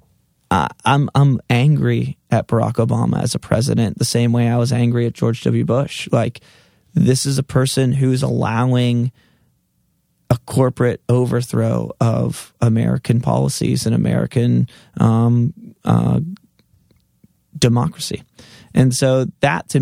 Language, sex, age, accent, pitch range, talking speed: English, male, 20-39, American, 115-130 Hz, 125 wpm